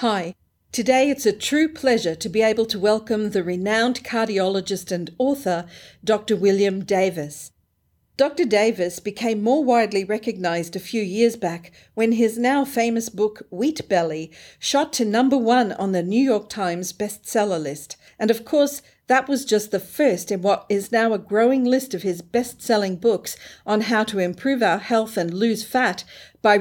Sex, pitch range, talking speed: female, 190-235 Hz, 170 wpm